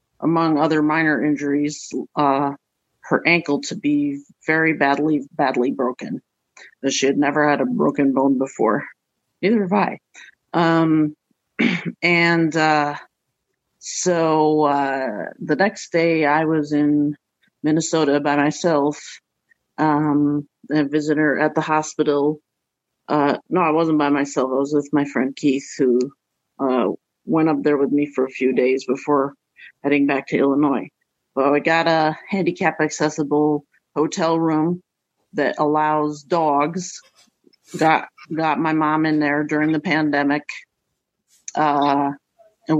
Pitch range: 145-155 Hz